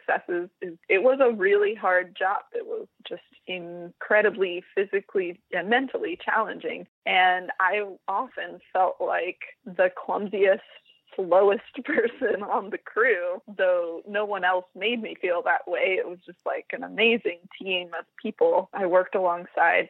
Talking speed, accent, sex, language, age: 140 wpm, American, female, English, 20-39